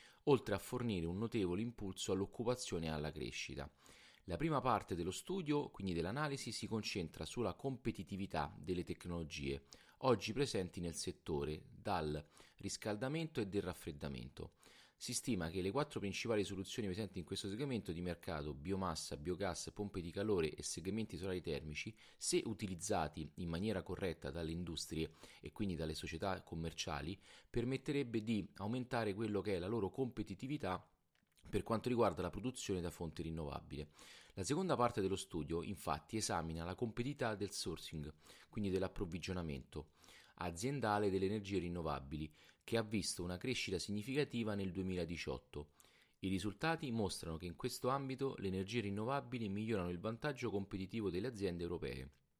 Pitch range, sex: 85-115 Hz, male